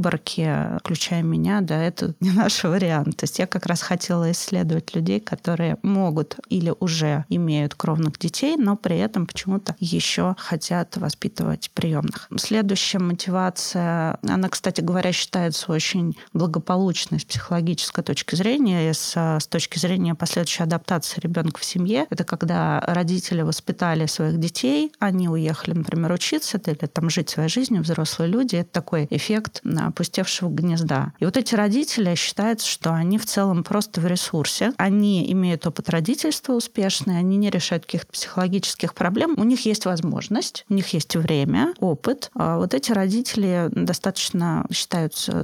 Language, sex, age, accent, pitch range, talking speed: Russian, female, 30-49, native, 165-195 Hz, 145 wpm